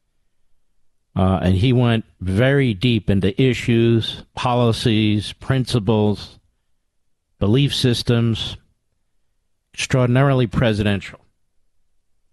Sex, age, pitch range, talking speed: male, 50-69, 95-120 Hz, 70 wpm